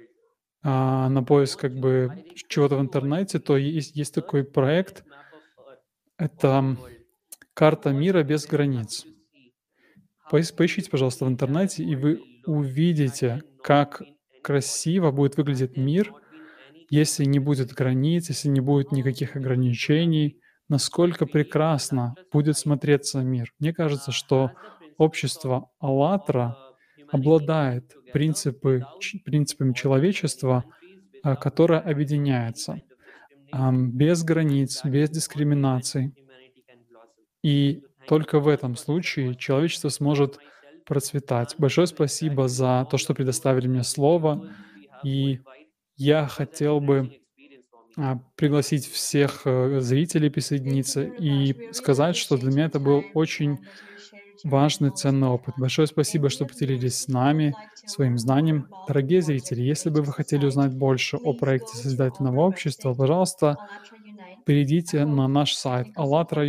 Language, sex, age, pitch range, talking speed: Russian, male, 20-39, 135-155 Hz, 105 wpm